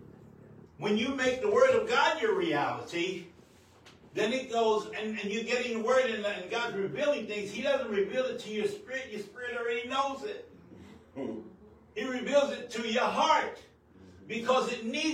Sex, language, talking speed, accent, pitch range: male, English, 165 wpm, American, 195-260 Hz